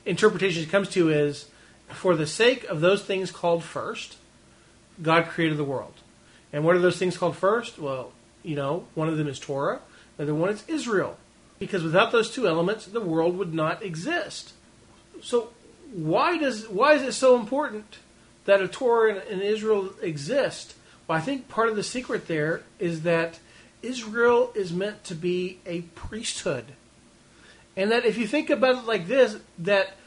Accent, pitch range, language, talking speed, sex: American, 150-210 Hz, English, 175 wpm, male